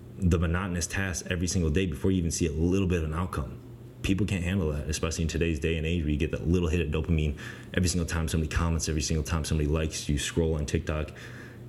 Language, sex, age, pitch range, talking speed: English, male, 20-39, 75-95 Hz, 245 wpm